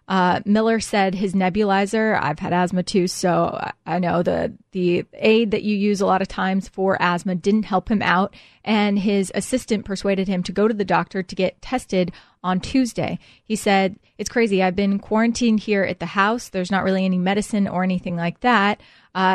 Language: English